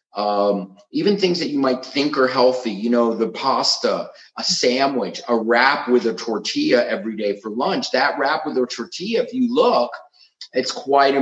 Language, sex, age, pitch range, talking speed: English, male, 40-59, 115-175 Hz, 185 wpm